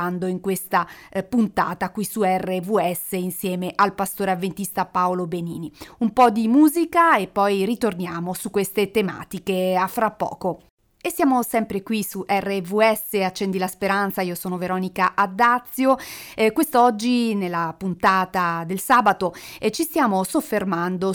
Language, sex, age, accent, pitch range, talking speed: Italian, female, 30-49, native, 180-225 Hz, 135 wpm